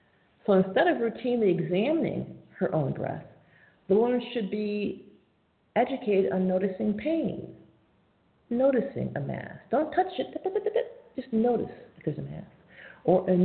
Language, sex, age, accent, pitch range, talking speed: English, female, 50-69, American, 200-300 Hz, 135 wpm